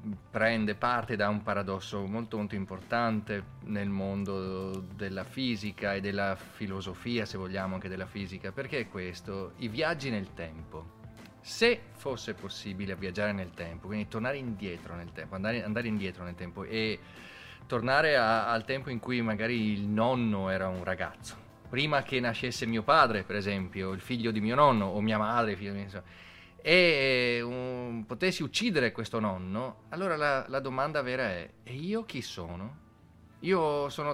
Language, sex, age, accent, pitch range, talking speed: Italian, male, 30-49, native, 95-130 Hz, 160 wpm